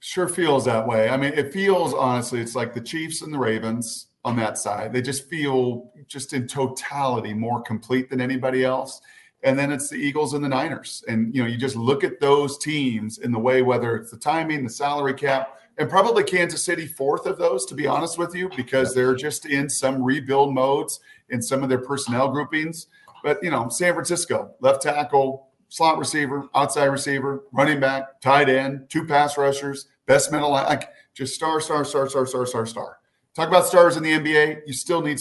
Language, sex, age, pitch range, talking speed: English, male, 40-59, 130-150 Hz, 205 wpm